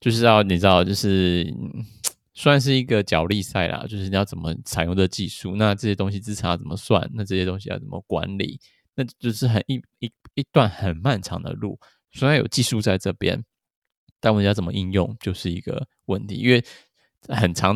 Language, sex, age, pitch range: Chinese, male, 20-39, 90-110 Hz